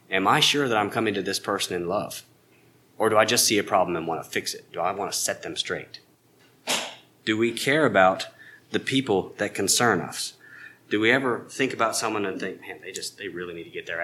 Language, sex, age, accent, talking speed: English, male, 30-49, American, 240 wpm